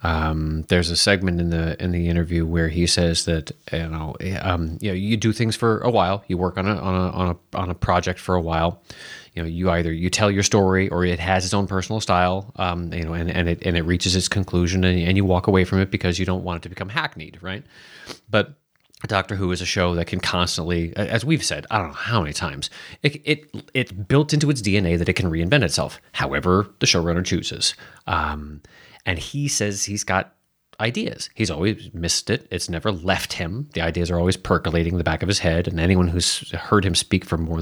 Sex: male